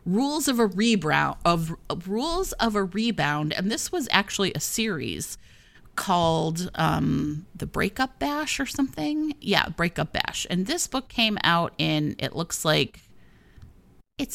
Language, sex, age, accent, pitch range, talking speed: English, female, 30-49, American, 155-220 Hz, 145 wpm